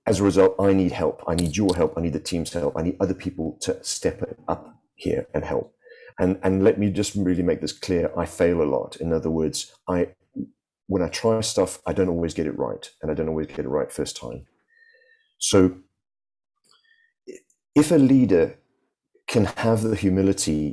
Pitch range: 85-115 Hz